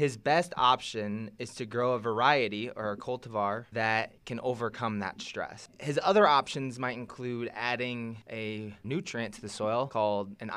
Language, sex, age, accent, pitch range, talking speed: English, male, 20-39, American, 110-130 Hz, 165 wpm